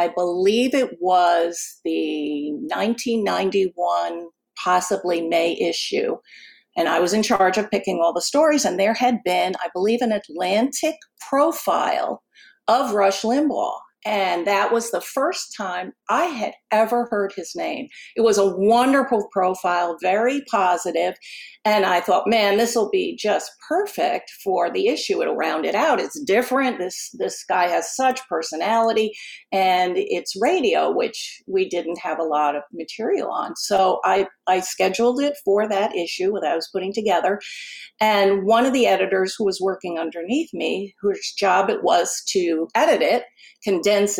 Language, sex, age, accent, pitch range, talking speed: English, female, 50-69, American, 185-260 Hz, 160 wpm